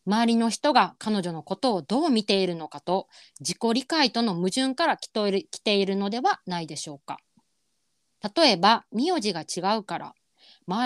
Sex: female